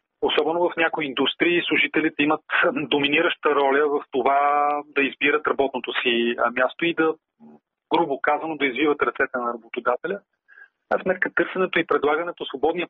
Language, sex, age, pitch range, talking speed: Bulgarian, male, 30-49, 140-170 Hz, 140 wpm